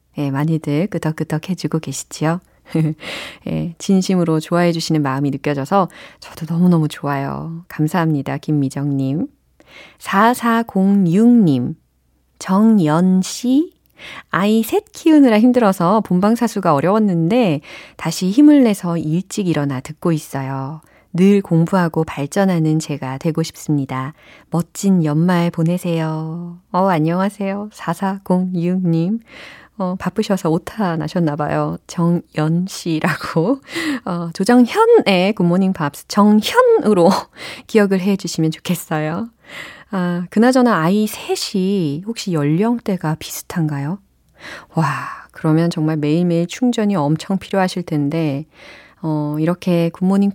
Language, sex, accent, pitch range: Korean, female, native, 155-200 Hz